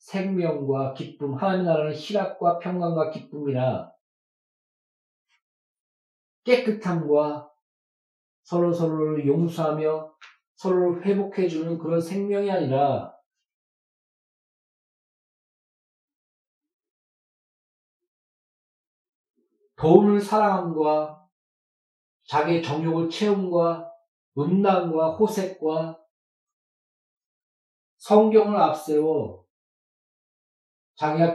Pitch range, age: 150-195 Hz, 40-59